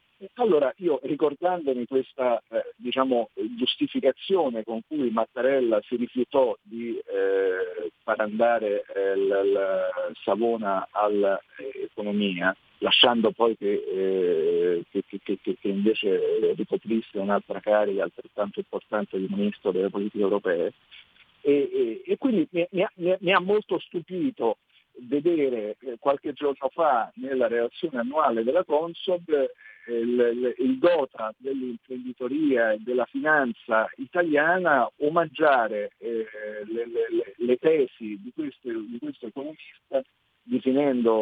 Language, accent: Italian, native